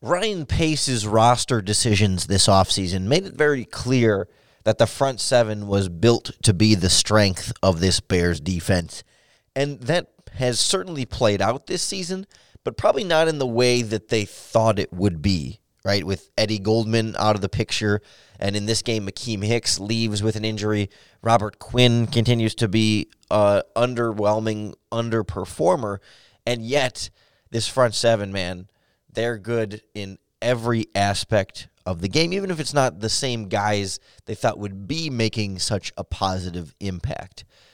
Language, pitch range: English, 100-120 Hz